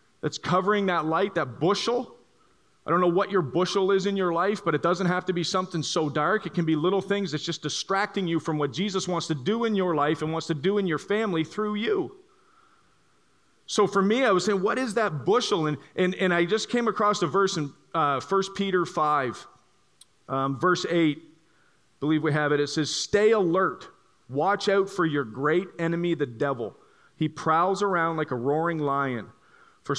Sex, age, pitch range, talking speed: male, 40-59, 150-195 Hz, 210 wpm